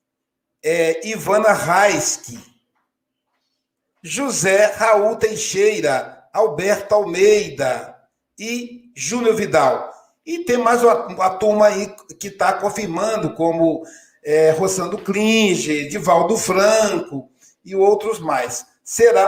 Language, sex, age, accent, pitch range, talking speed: Portuguese, male, 60-79, Brazilian, 160-220 Hz, 90 wpm